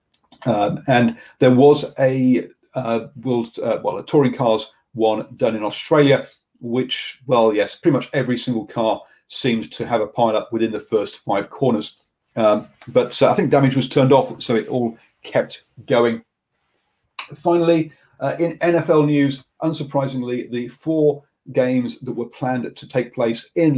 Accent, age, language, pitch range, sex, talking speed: British, 40-59, English, 120-155 Hz, male, 165 wpm